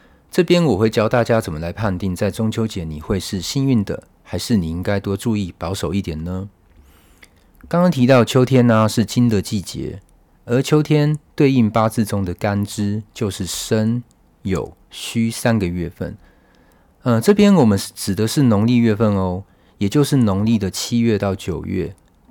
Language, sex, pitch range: Chinese, male, 90-125 Hz